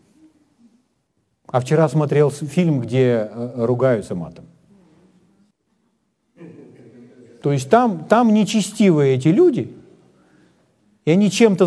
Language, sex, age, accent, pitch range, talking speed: Ukrainian, male, 40-59, native, 140-225 Hz, 85 wpm